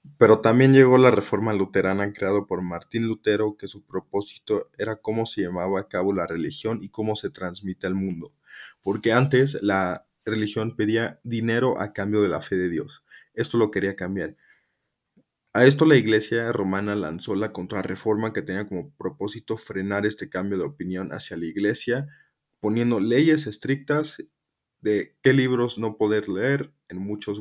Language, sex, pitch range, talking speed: Spanish, male, 90-115 Hz, 165 wpm